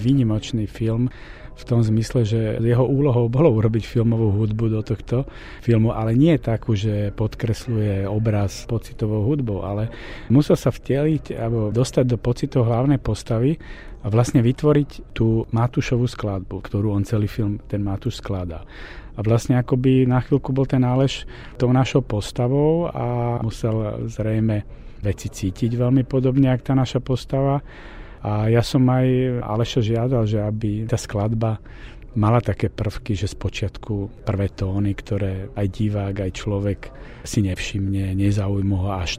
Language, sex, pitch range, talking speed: Czech, male, 105-125 Hz, 150 wpm